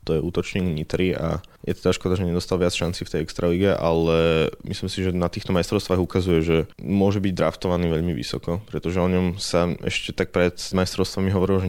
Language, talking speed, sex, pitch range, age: Slovak, 210 wpm, male, 85-95 Hz, 20-39